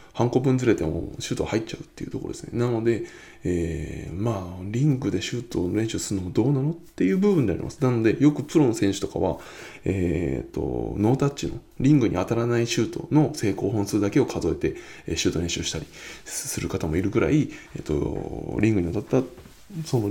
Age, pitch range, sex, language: 20-39, 95-130 Hz, male, Japanese